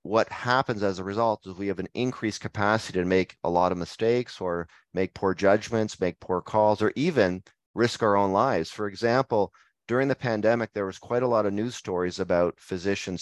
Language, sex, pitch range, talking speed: English, male, 95-115 Hz, 205 wpm